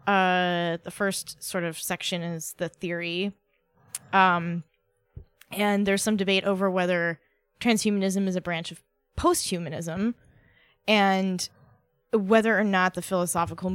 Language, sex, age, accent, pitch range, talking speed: English, female, 20-39, American, 165-200 Hz, 120 wpm